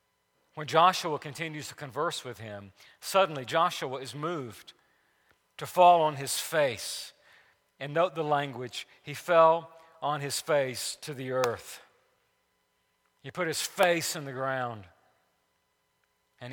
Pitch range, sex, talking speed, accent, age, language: 135-190 Hz, male, 130 wpm, American, 40-59, English